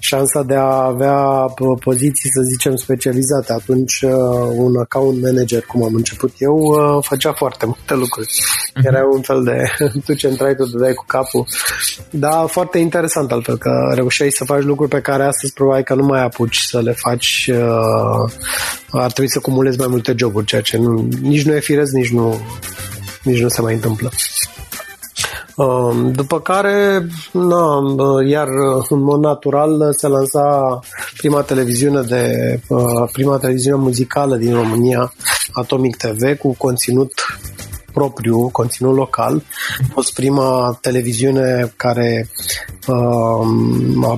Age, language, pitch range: 20-39, Romanian, 120-140 Hz